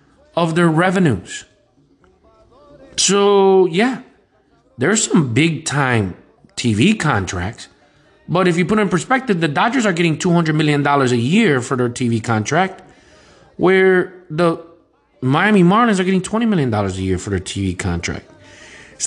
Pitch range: 130-185 Hz